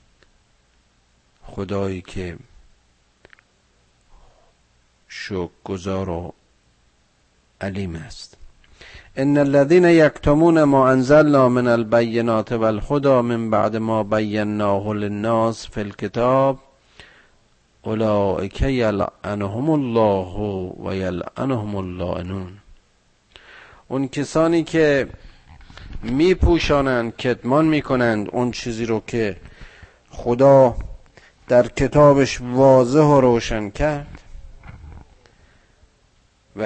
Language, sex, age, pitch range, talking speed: Persian, male, 50-69, 95-125 Hz, 75 wpm